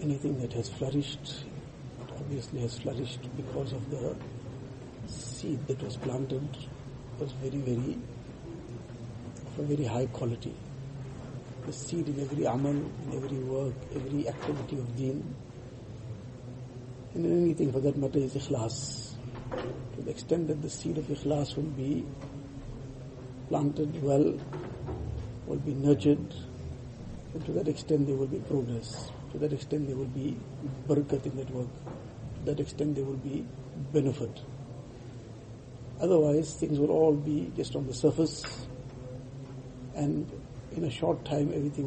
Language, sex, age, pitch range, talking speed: English, male, 60-79, 125-145 Hz, 140 wpm